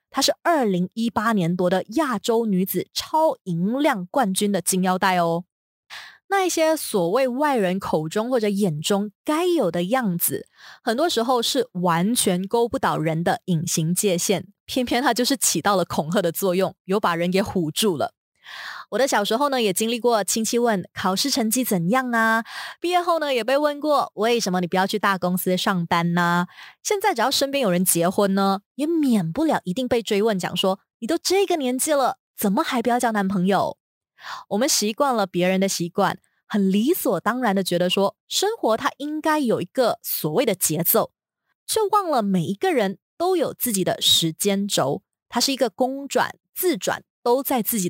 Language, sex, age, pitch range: Chinese, female, 20-39, 185-265 Hz